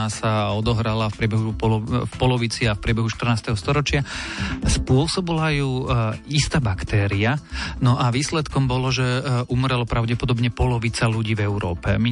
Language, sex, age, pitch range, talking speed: Slovak, male, 40-59, 110-120 Hz, 145 wpm